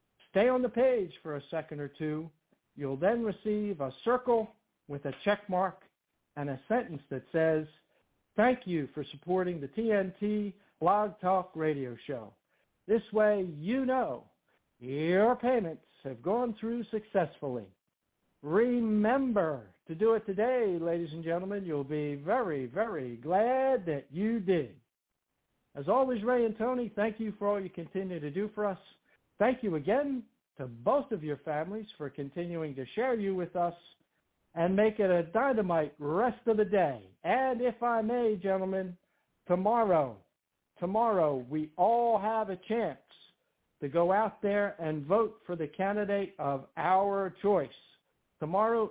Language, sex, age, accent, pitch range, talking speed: English, male, 60-79, American, 155-220 Hz, 150 wpm